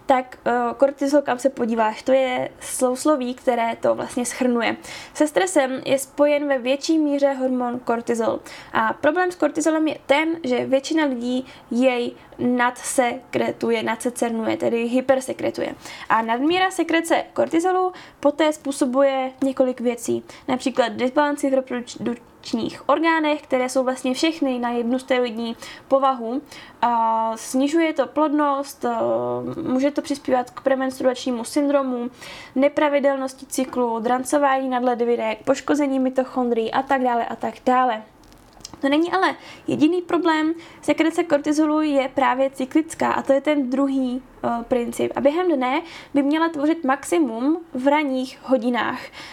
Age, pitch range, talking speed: 10-29, 250-295 Hz, 130 wpm